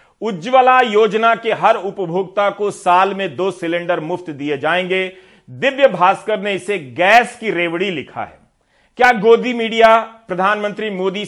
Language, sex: Hindi, male